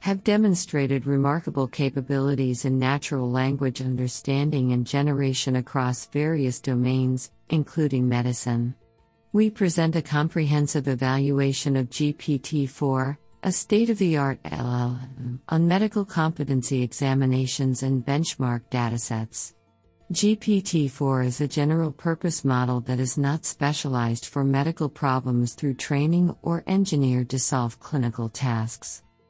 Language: English